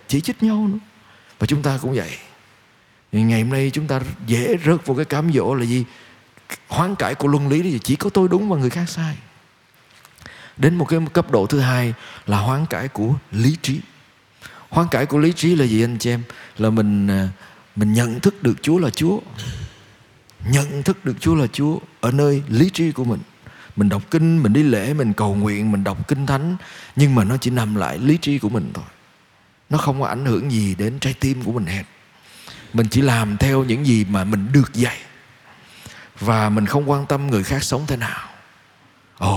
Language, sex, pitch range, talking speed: Vietnamese, male, 115-160 Hz, 210 wpm